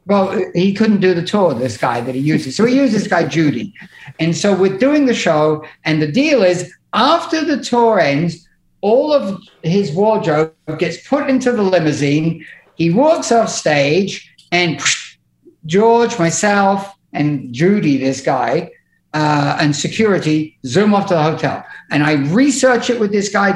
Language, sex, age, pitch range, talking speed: English, male, 50-69, 155-230 Hz, 170 wpm